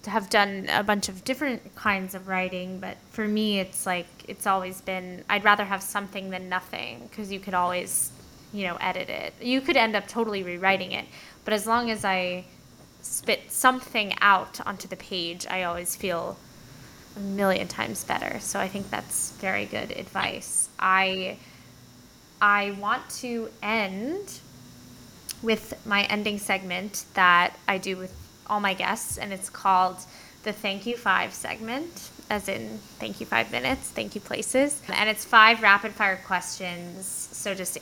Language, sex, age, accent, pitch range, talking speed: English, female, 10-29, American, 185-215 Hz, 165 wpm